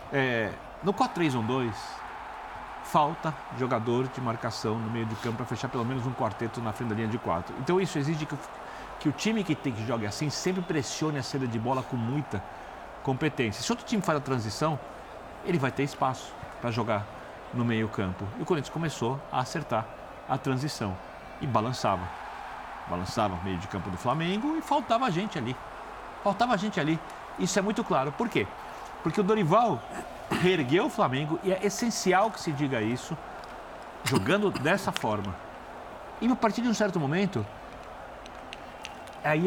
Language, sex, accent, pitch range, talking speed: Portuguese, male, Brazilian, 115-175 Hz, 170 wpm